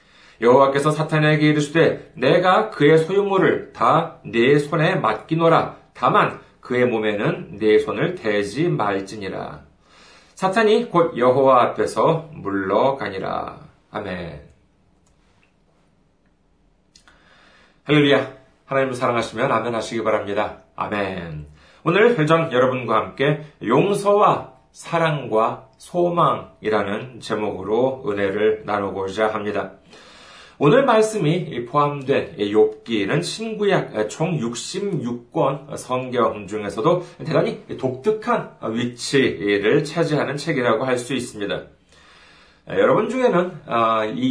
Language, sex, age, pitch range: Korean, male, 40-59, 110-165 Hz